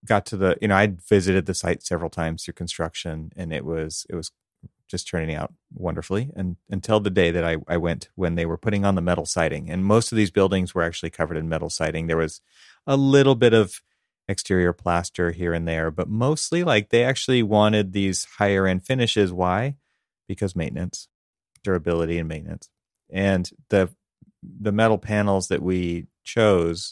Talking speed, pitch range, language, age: 185 wpm, 85-100 Hz, English, 30-49